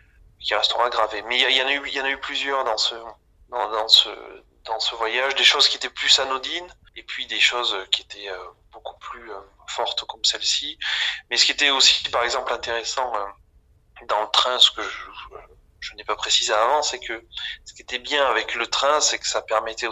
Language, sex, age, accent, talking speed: French, male, 30-49, French, 200 wpm